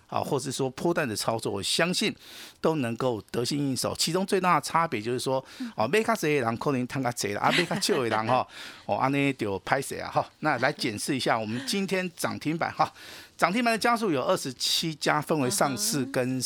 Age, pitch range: 50-69, 120-175 Hz